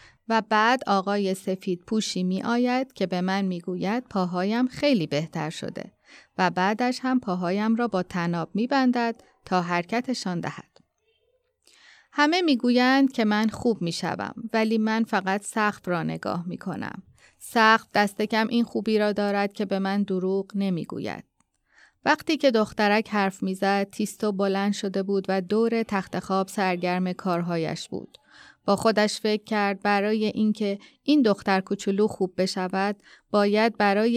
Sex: female